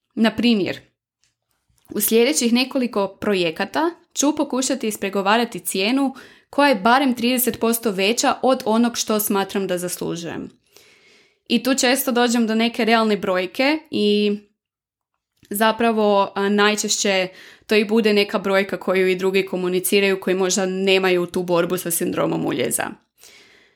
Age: 20-39